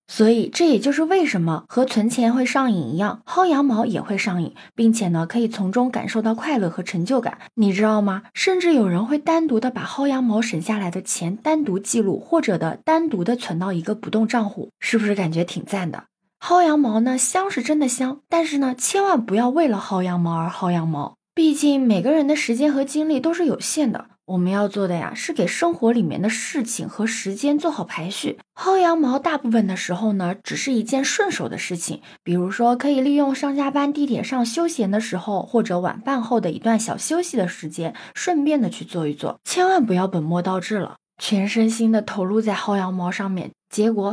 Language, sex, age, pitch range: Chinese, female, 20-39, 195-285 Hz